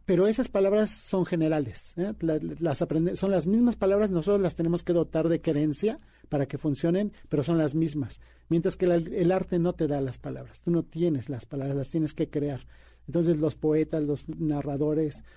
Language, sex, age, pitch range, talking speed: Spanish, male, 50-69, 150-180 Hz, 195 wpm